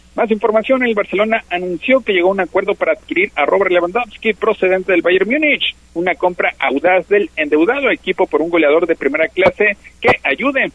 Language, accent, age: Spanish, Mexican, 50-69